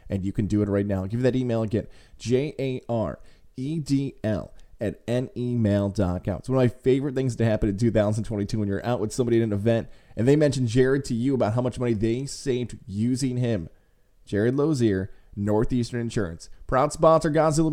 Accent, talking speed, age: American, 220 wpm, 20-39